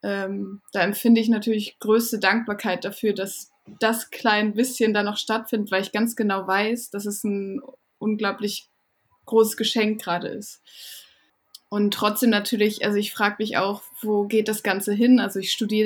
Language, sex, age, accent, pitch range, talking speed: German, female, 20-39, German, 205-230 Hz, 165 wpm